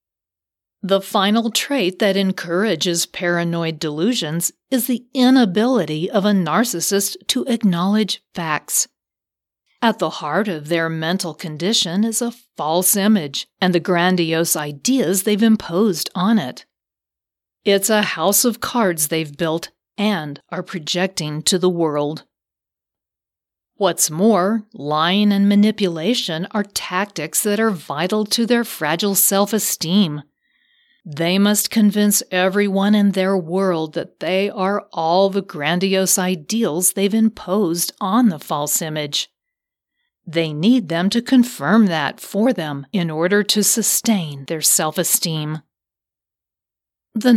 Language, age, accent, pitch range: English, 40-59, American, 165-215 Hz